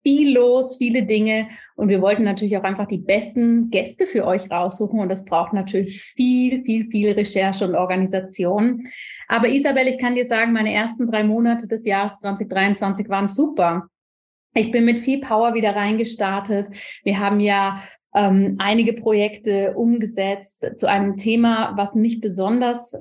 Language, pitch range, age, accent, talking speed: German, 195-230 Hz, 30-49, German, 160 wpm